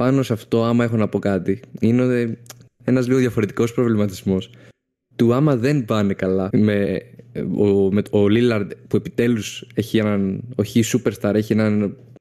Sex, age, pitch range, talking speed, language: male, 20-39, 105-125 Hz, 150 wpm, Greek